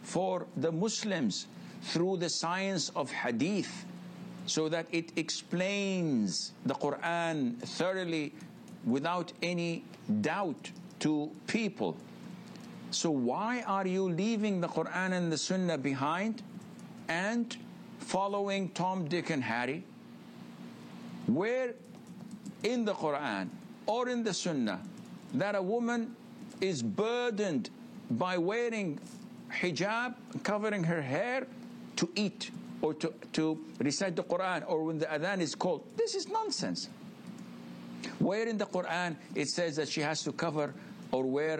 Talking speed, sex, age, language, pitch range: 125 wpm, male, 60-79, English, 155-215 Hz